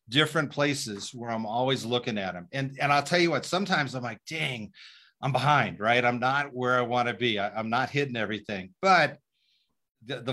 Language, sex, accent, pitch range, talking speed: English, male, American, 115-140 Hz, 200 wpm